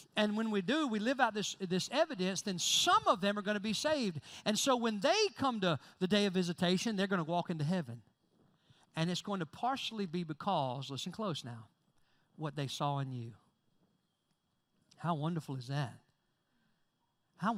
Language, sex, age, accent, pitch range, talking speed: English, male, 50-69, American, 165-225 Hz, 190 wpm